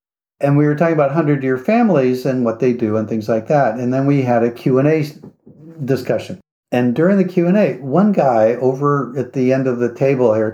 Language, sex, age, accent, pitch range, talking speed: English, male, 60-79, American, 125-175 Hz, 205 wpm